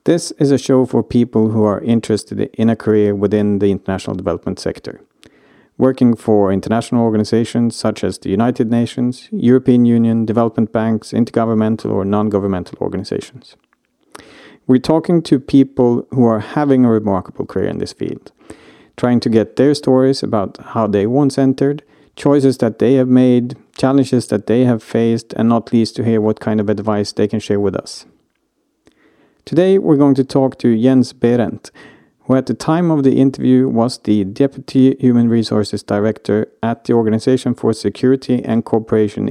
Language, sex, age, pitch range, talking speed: English, male, 50-69, 110-130 Hz, 165 wpm